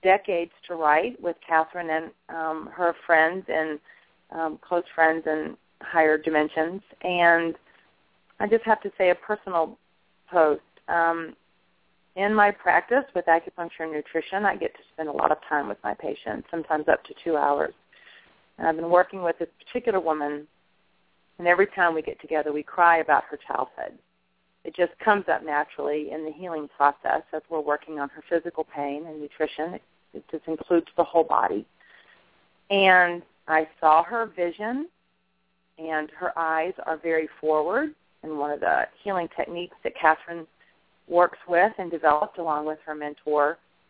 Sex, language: female, English